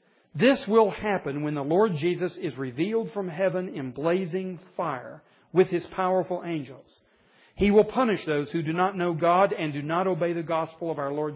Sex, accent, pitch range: male, American, 140-180 Hz